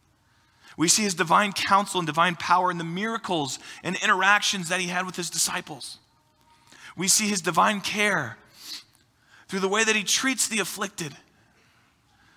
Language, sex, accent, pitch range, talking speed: English, male, American, 130-205 Hz, 155 wpm